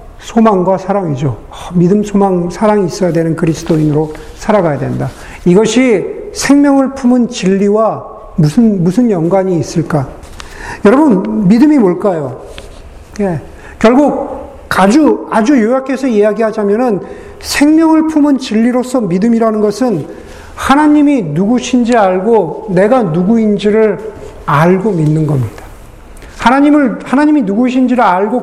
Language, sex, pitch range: Korean, male, 195-270 Hz